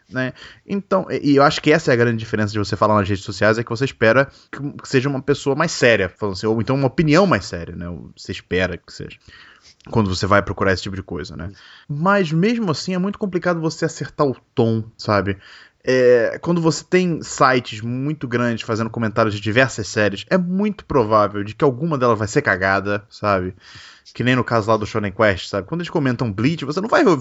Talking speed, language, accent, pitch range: 215 wpm, Portuguese, Brazilian, 110-150 Hz